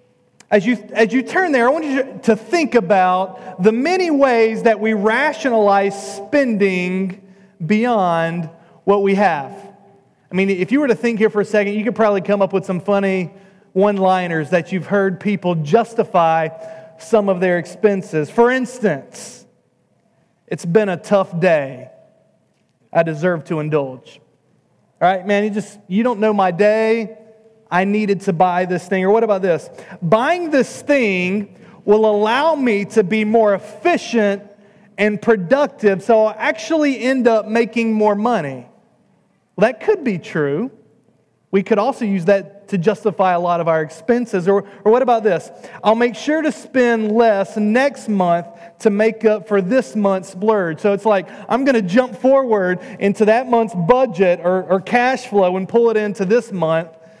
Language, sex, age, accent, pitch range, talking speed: English, male, 30-49, American, 190-230 Hz, 170 wpm